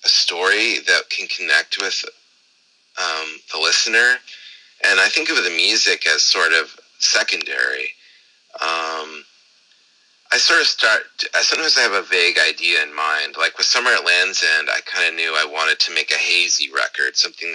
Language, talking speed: English, 180 wpm